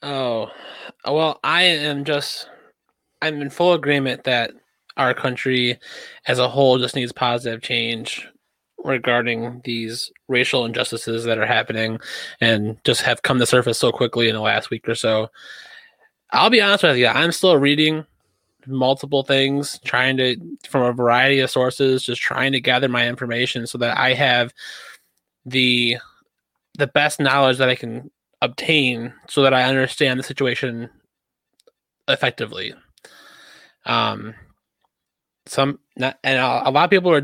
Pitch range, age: 120-150 Hz, 20-39